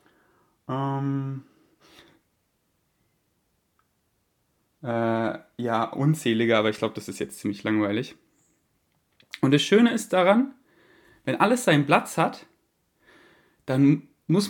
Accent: German